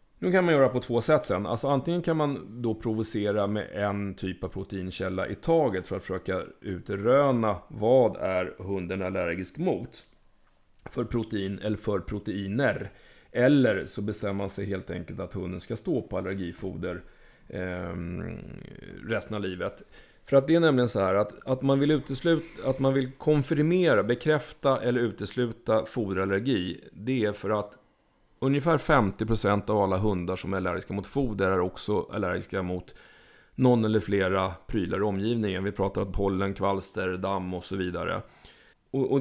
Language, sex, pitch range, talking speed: Swedish, male, 95-125 Hz, 160 wpm